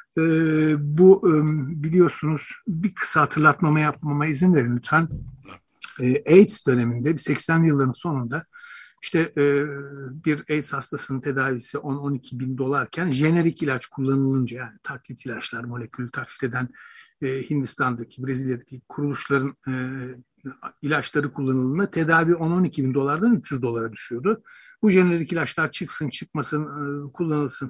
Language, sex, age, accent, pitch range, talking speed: Turkish, male, 60-79, native, 135-180 Hz, 120 wpm